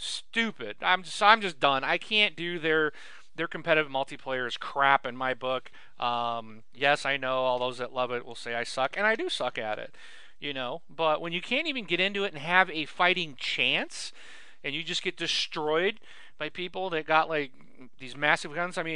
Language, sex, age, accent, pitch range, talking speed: English, male, 40-59, American, 140-185 Hz, 210 wpm